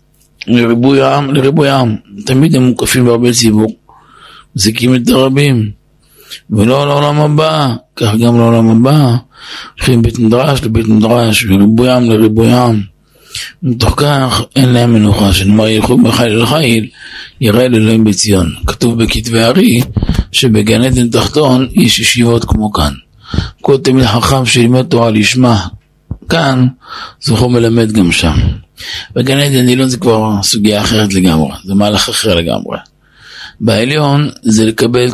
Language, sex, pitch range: Hebrew, male, 105-125 Hz